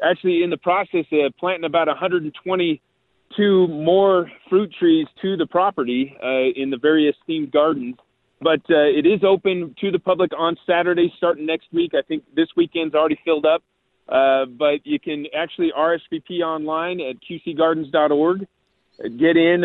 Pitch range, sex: 150-180 Hz, male